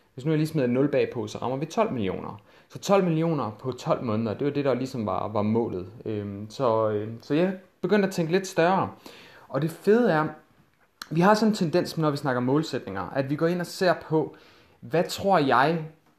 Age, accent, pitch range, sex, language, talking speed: 30-49, native, 120-165 Hz, male, Danish, 215 wpm